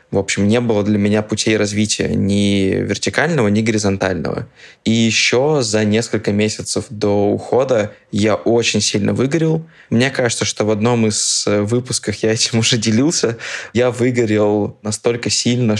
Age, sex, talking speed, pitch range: 20-39, male, 145 wpm, 105-115 Hz